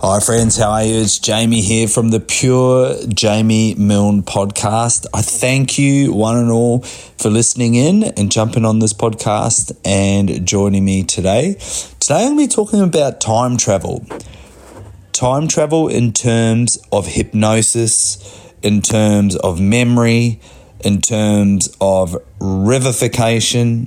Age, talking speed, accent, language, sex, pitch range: 30-49, 140 wpm, Australian, English, male, 100-120 Hz